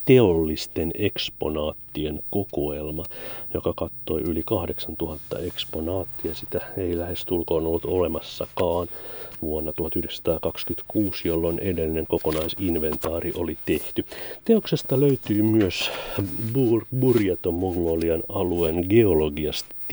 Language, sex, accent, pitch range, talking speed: Finnish, male, native, 80-110 Hz, 85 wpm